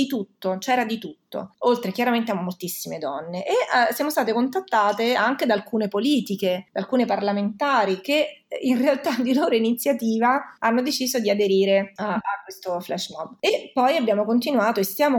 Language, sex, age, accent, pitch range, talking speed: Italian, female, 30-49, native, 190-245 Hz, 165 wpm